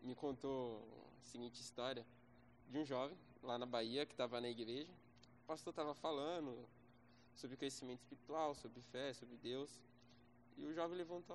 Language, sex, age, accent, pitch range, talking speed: Portuguese, male, 20-39, Brazilian, 120-170 Hz, 165 wpm